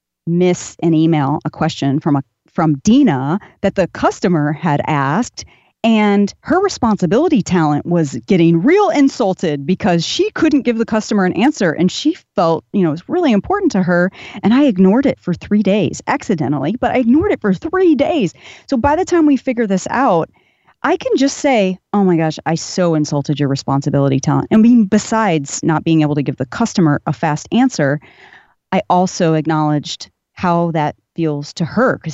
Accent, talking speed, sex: American, 185 wpm, female